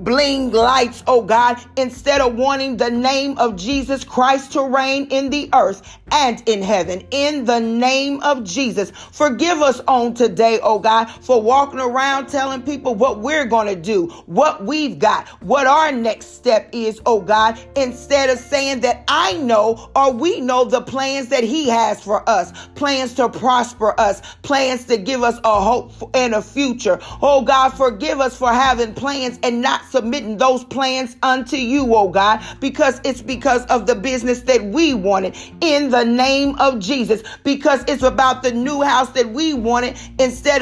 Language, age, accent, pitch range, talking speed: English, 40-59, American, 240-275 Hz, 175 wpm